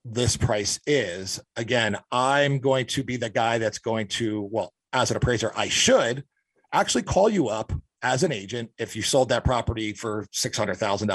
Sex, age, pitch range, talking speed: male, 40-59, 115-140 Hz, 180 wpm